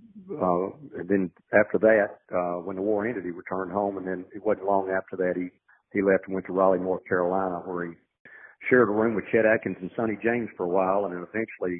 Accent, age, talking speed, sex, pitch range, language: American, 50-69, 235 wpm, male, 90-105 Hz, English